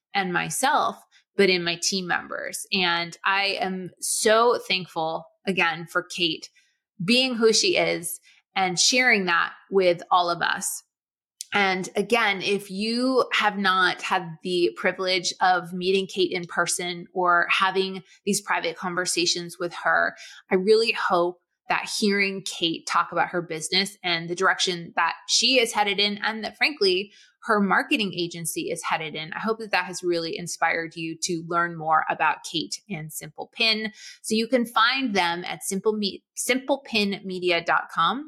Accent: American